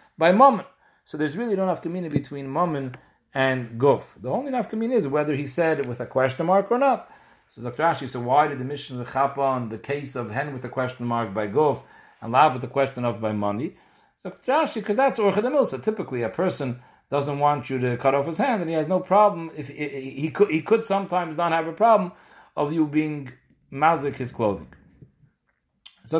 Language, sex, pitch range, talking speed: English, male, 130-185 Hz, 220 wpm